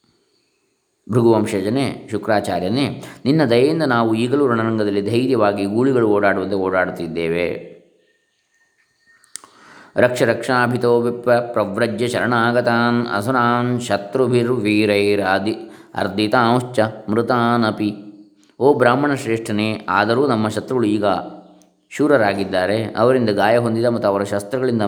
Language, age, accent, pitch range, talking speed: Kannada, 20-39, native, 105-125 Hz, 75 wpm